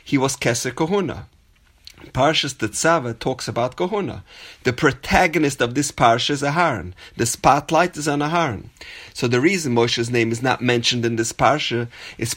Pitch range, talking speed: 120-165 Hz, 160 wpm